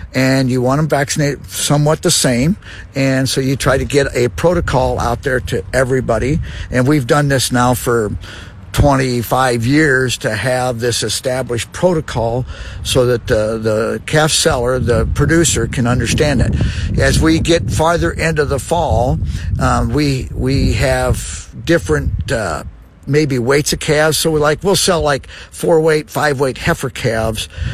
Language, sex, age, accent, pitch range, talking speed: English, male, 50-69, American, 110-140 Hz, 160 wpm